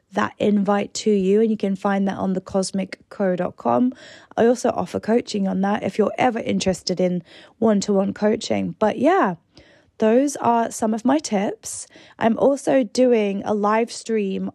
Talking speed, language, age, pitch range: 155 wpm, English, 20-39, 205-255 Hz